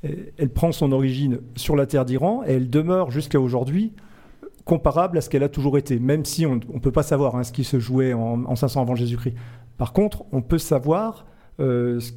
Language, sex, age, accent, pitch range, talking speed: French, male, 40-59, French, 125-150 Hz, 215 wpm